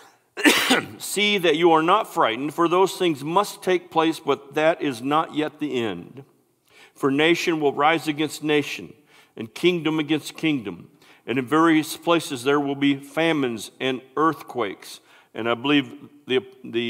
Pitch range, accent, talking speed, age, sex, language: 125-160 Hz, American, 155 wpm, 50-69, male, English